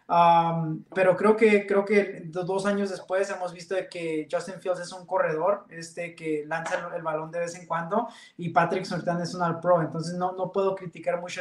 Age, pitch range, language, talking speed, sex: 20-39, 170-195 Hz, English, 215 wpm, male